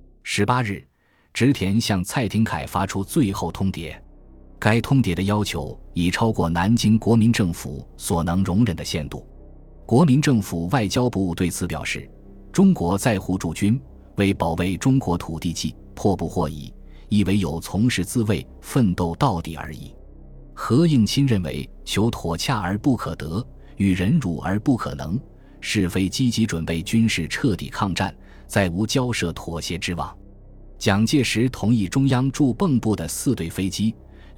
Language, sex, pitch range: Chinese, male, 85-115 Hz